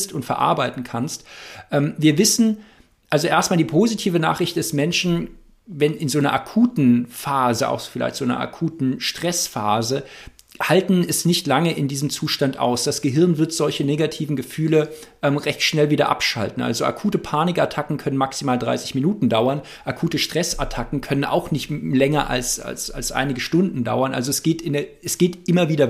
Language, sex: German, male